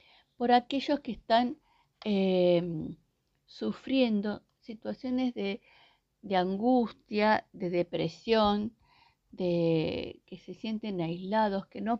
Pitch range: 195-250 Hz